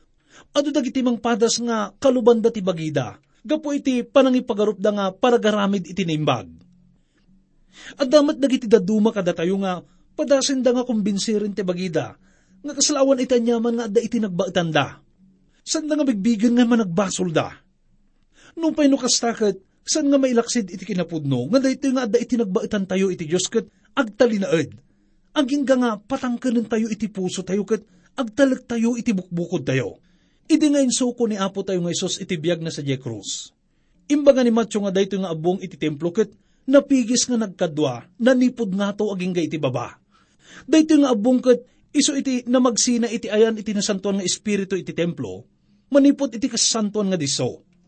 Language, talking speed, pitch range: English, 145 wpm, 180-250 Hz